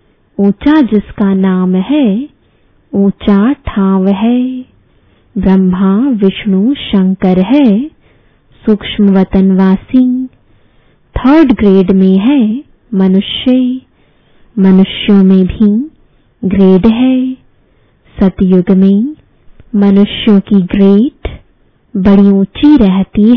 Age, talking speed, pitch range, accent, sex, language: 20-39, 80 wpm, 195-255 Hz, Indian, female, English